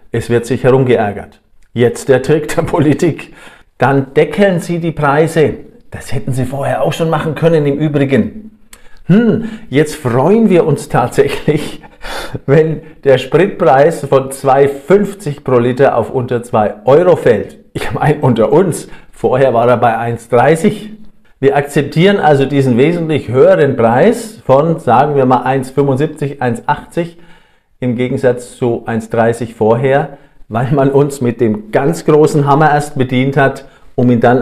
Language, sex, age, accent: German, male, 50-69, German